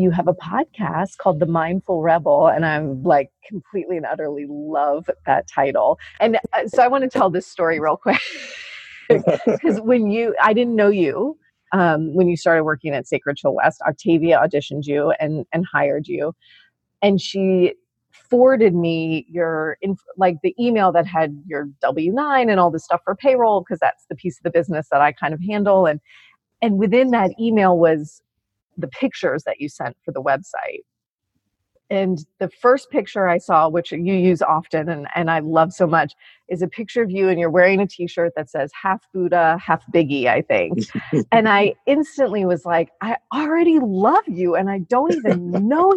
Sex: female